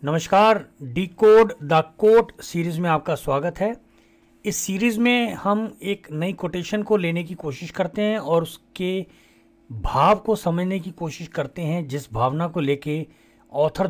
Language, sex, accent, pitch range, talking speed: Hindi, male, native, 145-210 Hz, 160 wpm